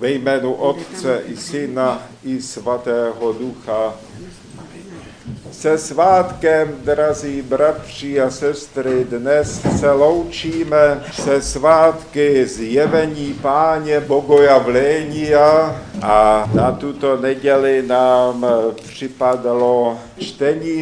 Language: Czech